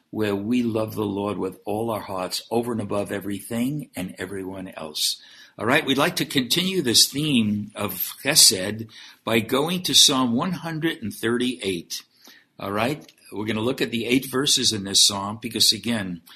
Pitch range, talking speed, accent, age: 110-150 Hz, 170 wpm, American, 60-79